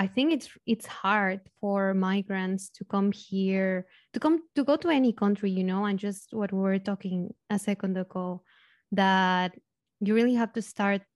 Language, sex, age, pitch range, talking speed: English, female, 20-39, 195-225 Hz, 185 wpm